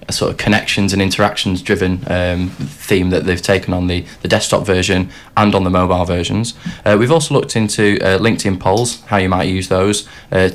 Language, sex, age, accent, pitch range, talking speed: English, male, 20-39, British, 95-110 Hz, 200 wpm